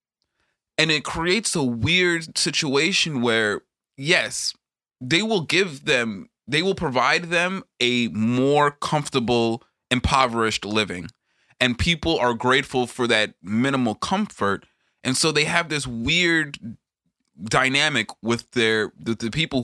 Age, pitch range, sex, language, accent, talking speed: 20-39, 105-140 Hz, male, English, American, 125 wpm